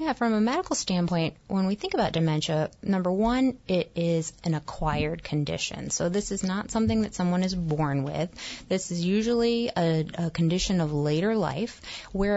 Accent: American